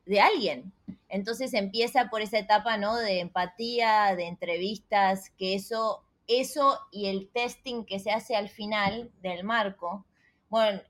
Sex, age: female, 20-39